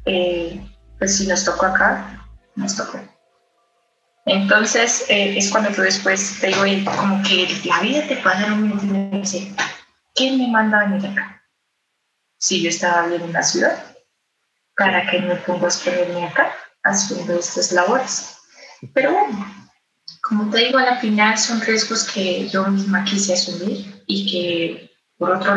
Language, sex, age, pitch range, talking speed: Spanish, female, 20-39, 180-210 Hz, 160 wpm